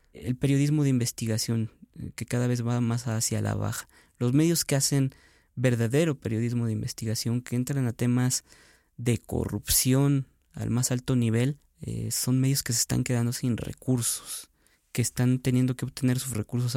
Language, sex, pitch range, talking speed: Spanish, male, 110-130 Hz, 165 wpm